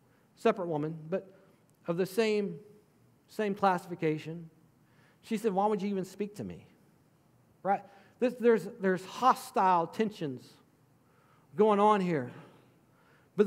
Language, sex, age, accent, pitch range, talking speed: English, male, 50-69, American, 145-200 Hz, 120 wpm